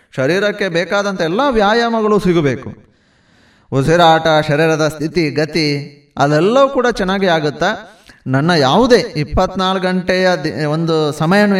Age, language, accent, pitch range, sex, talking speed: 30-49, Kannada, native, 155-205 Hz, male, 105 wpm